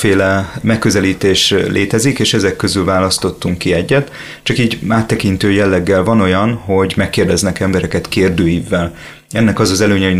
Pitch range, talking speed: 95-110 Hz, 140 wpm